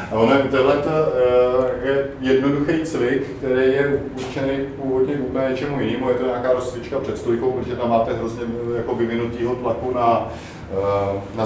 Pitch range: 115-140 Hz